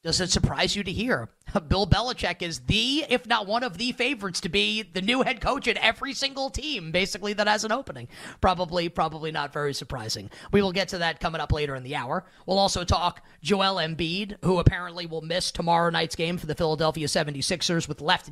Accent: American